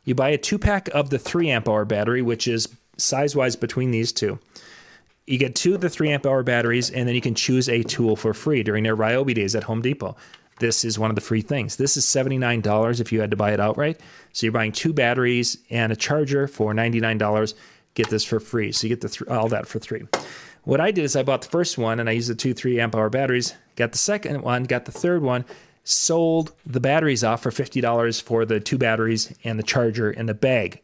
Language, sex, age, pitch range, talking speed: English, male, 30-49, 110-135 Hz, 235 wpm